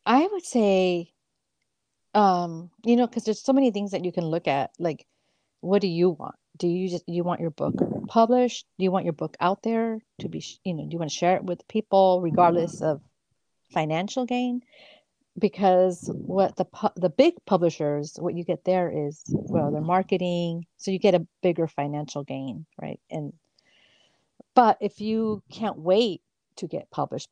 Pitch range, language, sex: 160-205 Hz, English, female